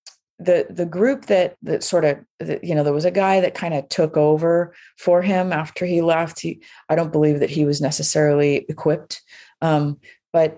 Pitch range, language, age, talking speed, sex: 140-170 Hz, English, 30-49, 195 wpm, female